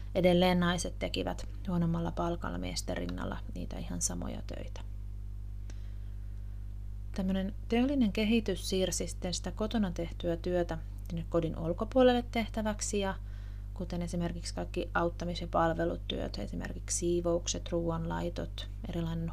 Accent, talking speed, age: native, 105 wpm, 30-49